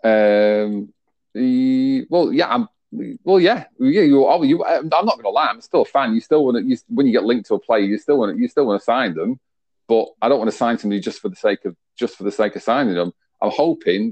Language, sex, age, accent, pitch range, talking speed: English, male, 40-59, British, 95-115 Hz, 250 wpm